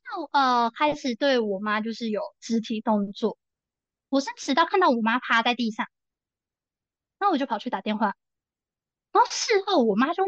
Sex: female